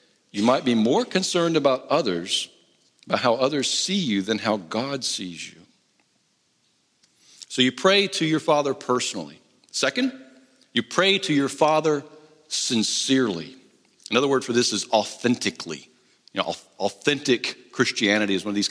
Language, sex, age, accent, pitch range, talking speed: English, male, 50-69, American, 105-150 Hz, 145 wpm